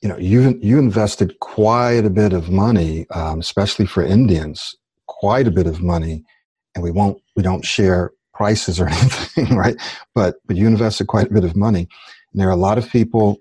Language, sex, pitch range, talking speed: English, male, 90-110 Hz, 200 wpm